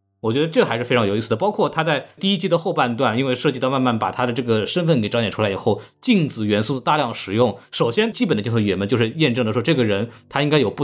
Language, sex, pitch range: Chinese, male, 110-150 Hz